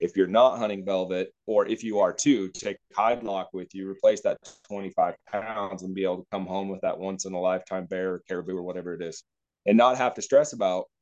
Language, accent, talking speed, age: English, American, 240 wpm, 30-49